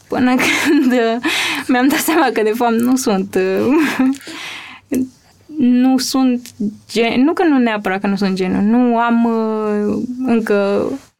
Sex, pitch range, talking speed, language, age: female, 205-260 Hz, 130 wpm, Romanian, 20-39